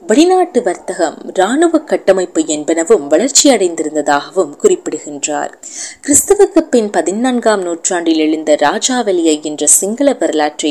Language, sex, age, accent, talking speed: Tamil, female, 20-39, native, 90 wpm